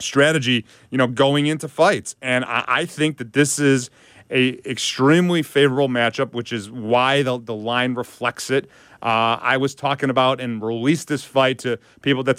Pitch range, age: 125-140 Hz, 30-49